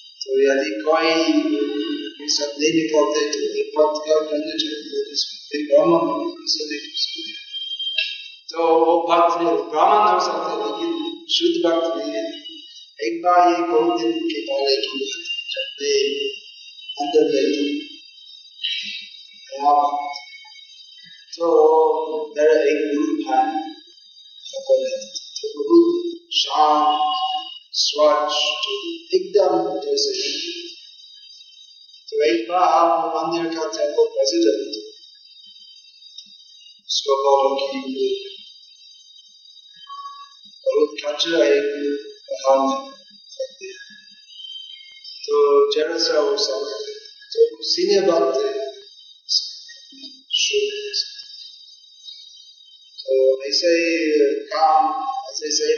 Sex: male